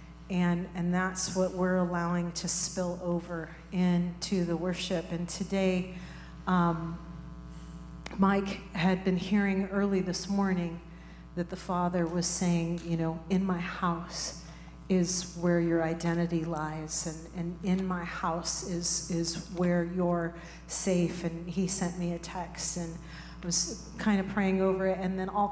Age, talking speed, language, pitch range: 40-59, 150 wpm, English, 175-195 Hz